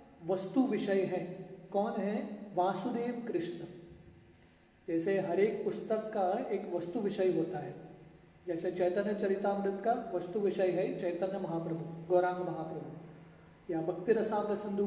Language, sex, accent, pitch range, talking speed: English, male, Indian, 175-210 Hz, 125 wpm